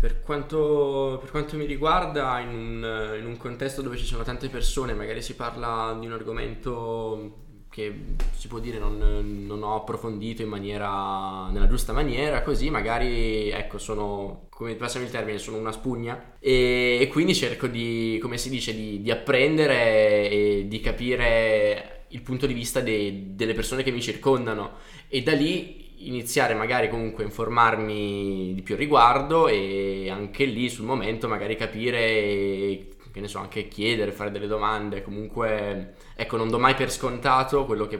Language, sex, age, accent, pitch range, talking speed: Italian, male, 10-29, native, 105-125 Hz, 165 wpm